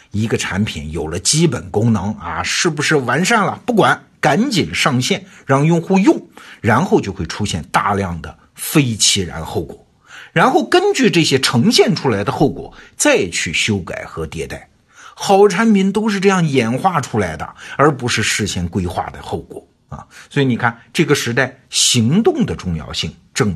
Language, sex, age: Chinese, male, 50-69